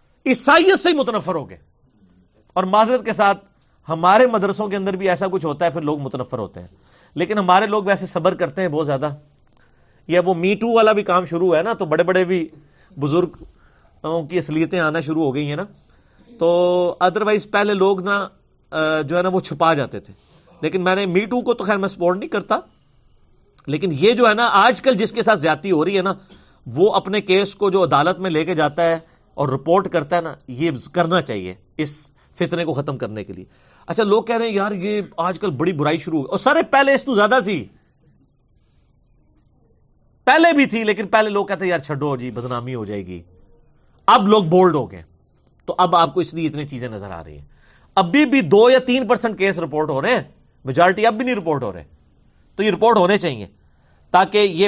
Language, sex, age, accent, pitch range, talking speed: English, male, 40-59, Indian, 150-205 Hz, 175 wpm